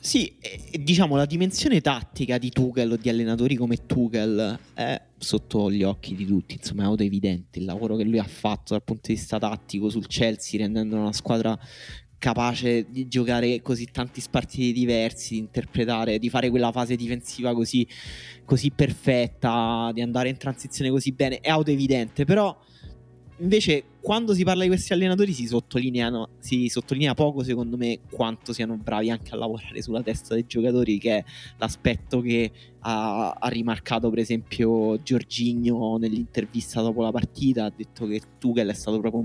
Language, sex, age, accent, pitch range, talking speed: Italian, male, 20-39, native, 115-130 Hz, 165 wpm